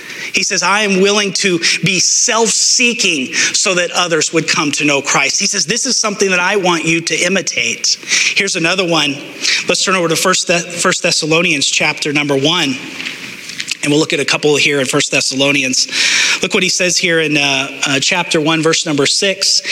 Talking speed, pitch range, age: 190 wpm, 160-205 Hz, 30-49